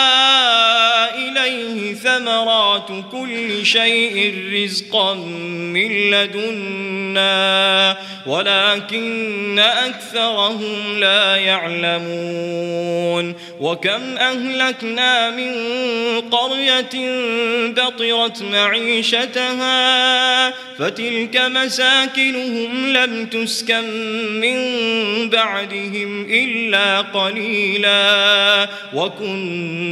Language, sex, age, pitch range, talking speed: Arabic, male, 20-39, 195-230 Hz, 50 wpm